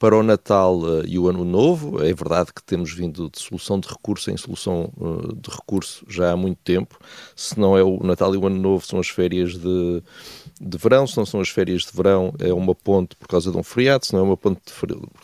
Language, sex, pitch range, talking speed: Portuguese, male, 90-135 Hz, 235 wpm